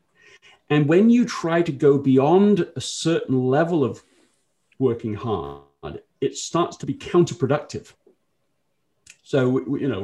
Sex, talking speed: male, 125 wpm